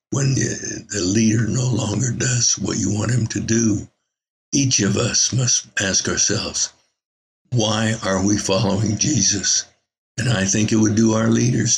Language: English